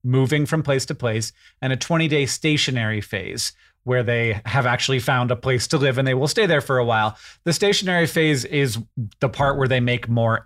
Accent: American